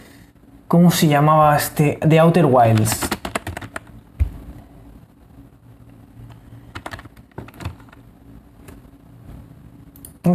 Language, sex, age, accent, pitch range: Spanish, male, 20-39, Spanish, 120-170 Hz